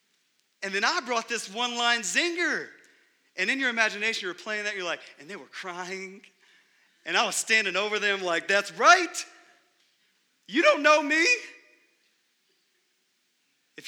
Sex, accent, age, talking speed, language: male, American, 30-49, 145 wpm, English